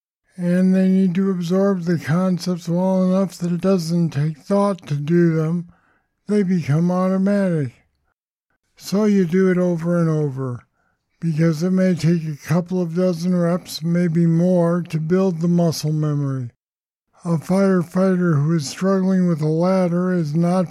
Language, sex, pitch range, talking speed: English, male, 155-180 Hz, 155 wpm